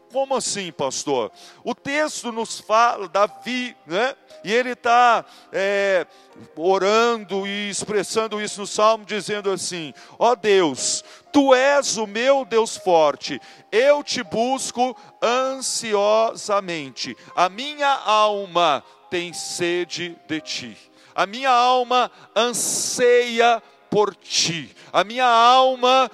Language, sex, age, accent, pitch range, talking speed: Portuguese, male, 50-69, Brazilian, 185-235 Hz, 110 wpm